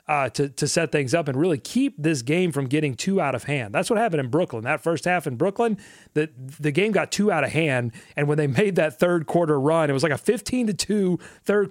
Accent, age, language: American, 40-59, English